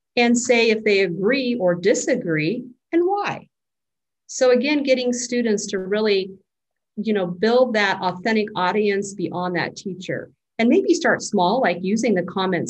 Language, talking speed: English, 150 wpm